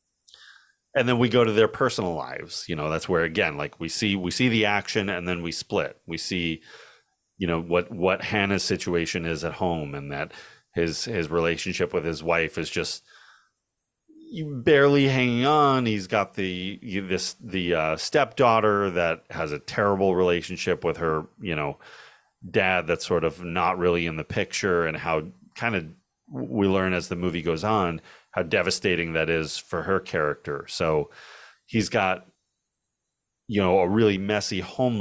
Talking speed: 170 wpm